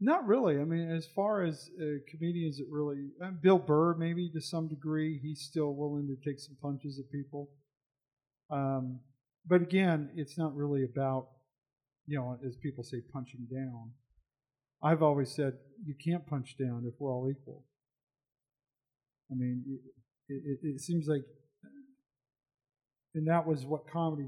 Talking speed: 160 wpm